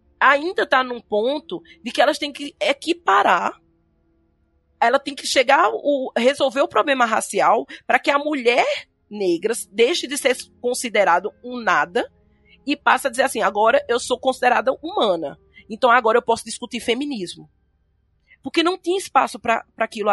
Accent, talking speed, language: Brazilian, 160 wpm, Portuguese